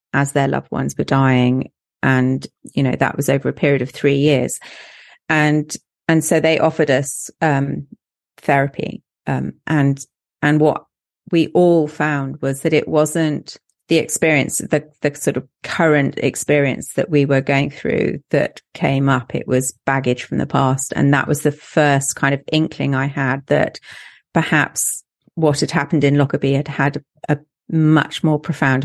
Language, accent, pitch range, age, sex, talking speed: English, British, 140-165 Hz, 30-49, female, 170 wpm